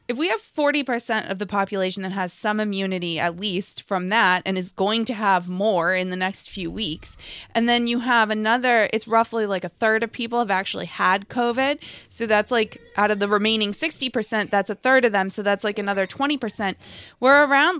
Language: English